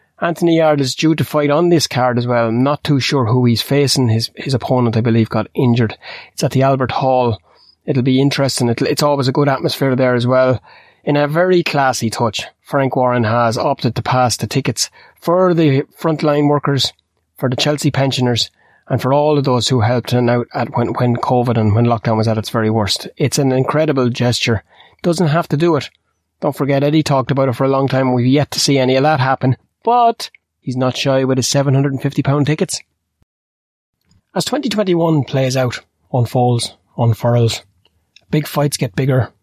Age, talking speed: 30-49, 195 wpm